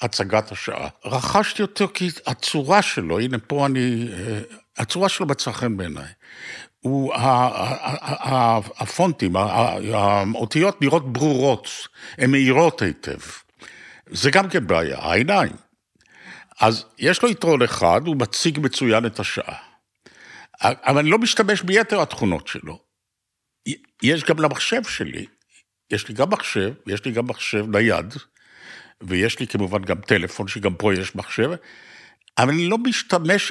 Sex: male